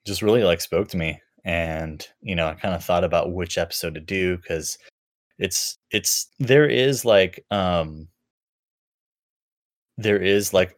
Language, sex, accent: English, male, American